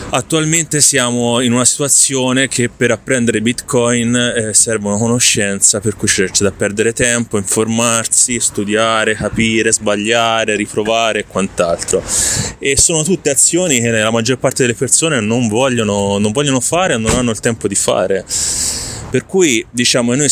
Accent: native